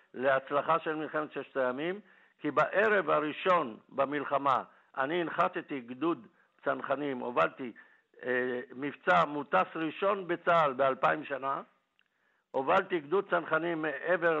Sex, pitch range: male, 140-165 Hz